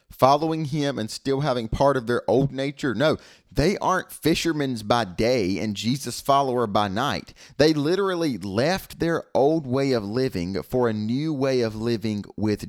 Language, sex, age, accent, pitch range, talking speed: English, male, 30-49, American, 115-155 Hz, 170 wpm